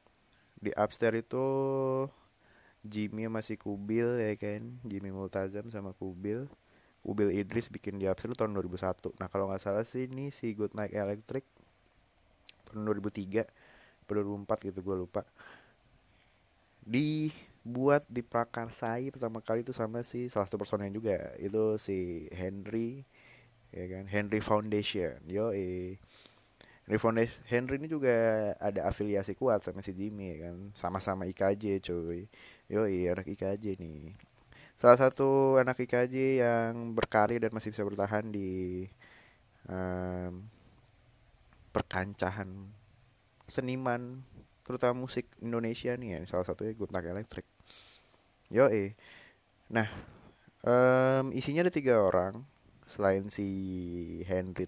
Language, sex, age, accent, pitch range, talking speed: Indonesian, male, 20-39, native, 95-120 Hz, 115 wpm